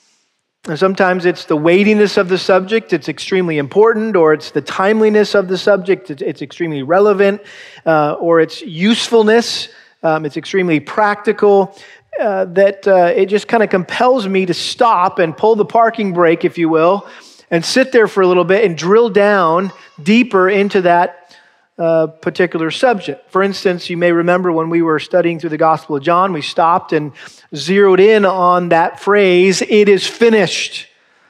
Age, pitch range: 40-59, 165-200 Hz